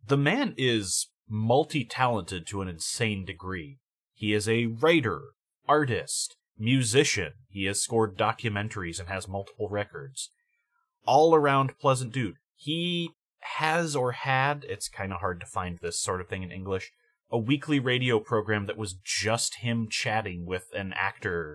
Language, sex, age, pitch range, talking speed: English, male, 30-49, 100-130 Hz, 145 wpm